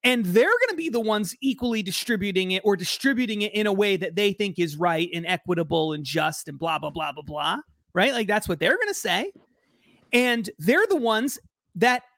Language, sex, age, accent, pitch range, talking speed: English, male, 30-49, American, 210-295 Hz, 215 wpm